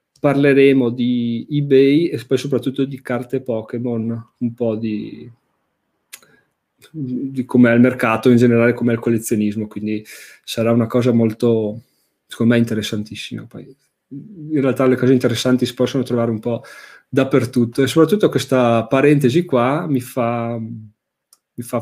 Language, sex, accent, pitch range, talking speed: Italian, male, native, 115-135 Hz, 140 wpm